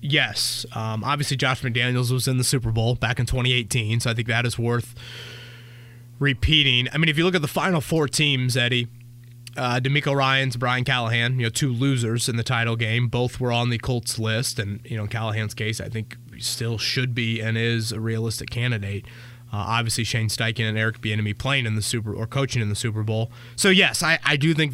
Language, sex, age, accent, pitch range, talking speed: English, male, 20-39, American, 115-130 Hz, 220 wpm